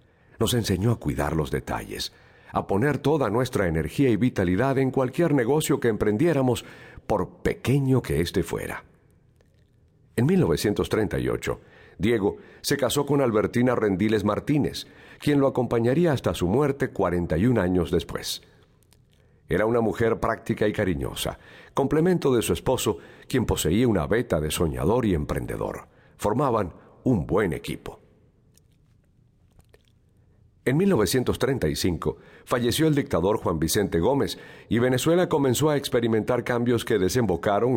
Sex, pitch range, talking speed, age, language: male, 90-130 Hz, 125 wpm, 50-69, Spanish